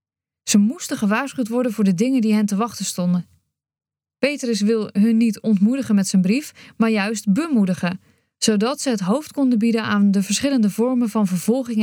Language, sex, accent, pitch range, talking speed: Dutch, female, Dutch, 195-245 Hz, 180 wpm